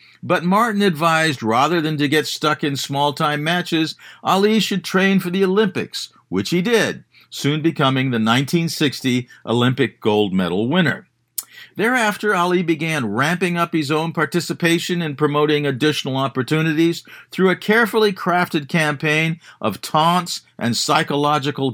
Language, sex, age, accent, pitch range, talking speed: English, male, 50-69, American, 140-185 Hz, 135 wpm